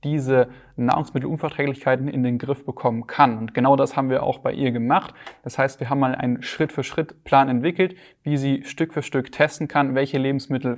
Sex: male